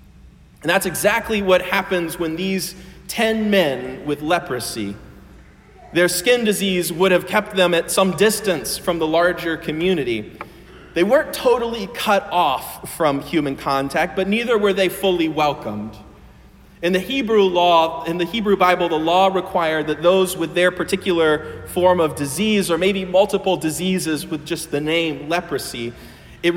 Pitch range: 160-195 Hz